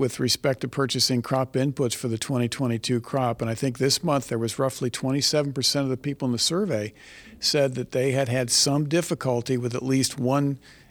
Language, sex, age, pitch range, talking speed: English, male, 50-69, 125-145 Hz, 200 wpm